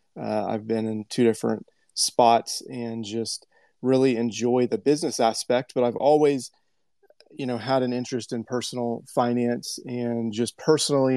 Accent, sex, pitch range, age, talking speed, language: American, male, 115-130 Hz, 30-49, 150 wpm, English